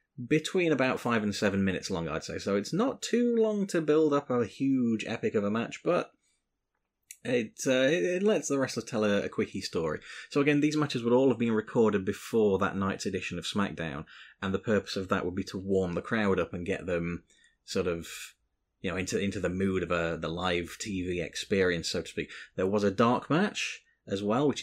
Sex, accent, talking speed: male, British, 220 wpm